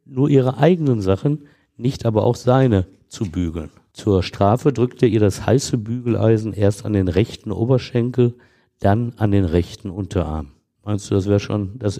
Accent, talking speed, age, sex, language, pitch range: German, 170 wpm, 50-69, male, German, 95-120 Hz